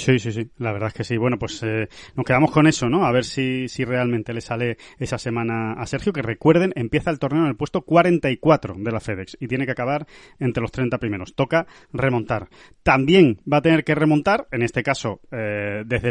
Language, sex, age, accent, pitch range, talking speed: Spanish, male, 20-39, Spanish, 115-145 Hz, 225 wpm